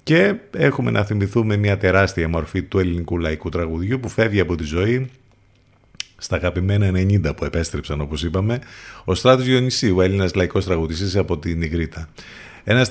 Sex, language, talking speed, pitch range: male, Greek, 155 wpm, 85-115 Hz